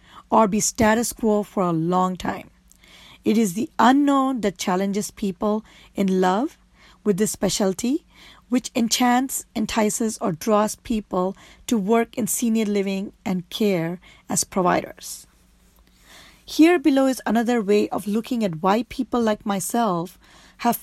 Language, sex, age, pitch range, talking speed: English, female, 40-59, 190-235 Hz, 140 wpm